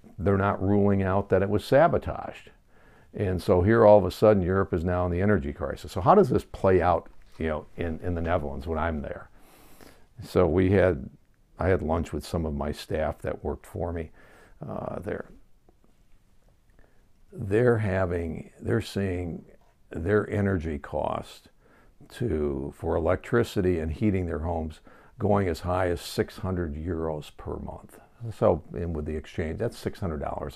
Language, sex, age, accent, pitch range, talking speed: English, male, 60-79, American, 80-100 Hz, 160 wpm